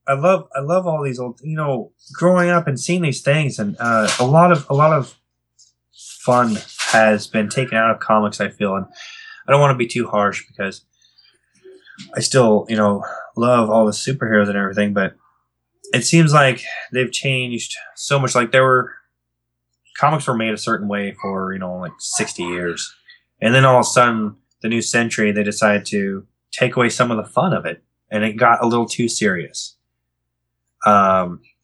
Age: 20-39